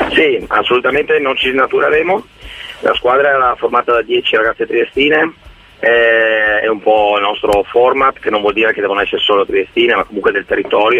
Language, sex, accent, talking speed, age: Italian, male, native, 180 wpm, 30-49